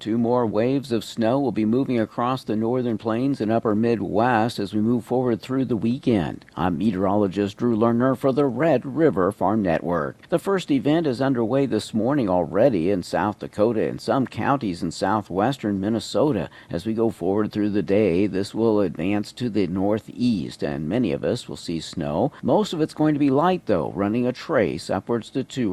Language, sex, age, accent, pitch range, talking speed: English, male, 50-69, American, 95-120 Hz, 195 wpm